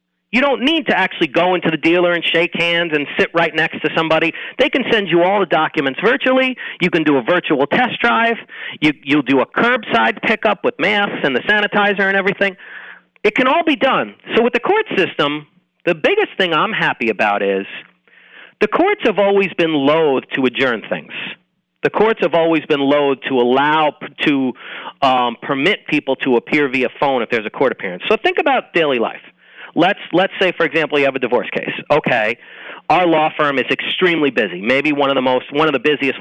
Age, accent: 40-59, American